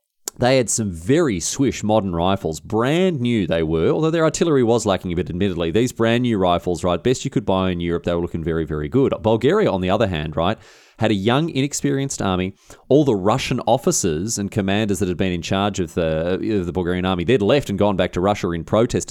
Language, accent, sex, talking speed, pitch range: English, Australian, male, 230 wpm, 90-125 Hz